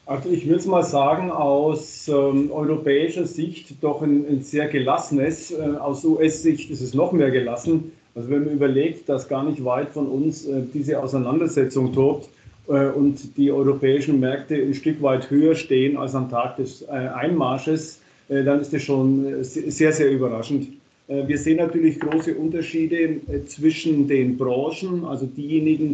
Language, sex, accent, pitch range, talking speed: German, male, German, 135-155 Hz, 170 wpm